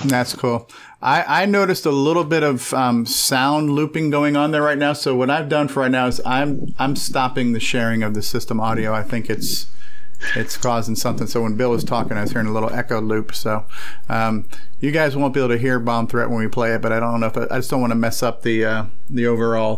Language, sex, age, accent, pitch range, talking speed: English, male, 40-59, American, 115-145 Hz, 255 wpm